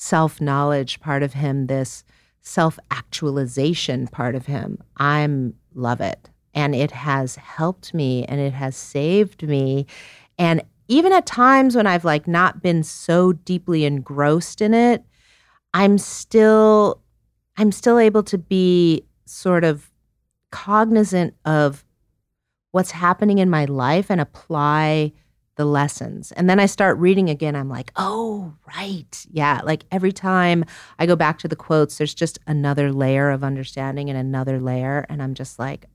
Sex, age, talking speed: female, 40-59, 150 wpm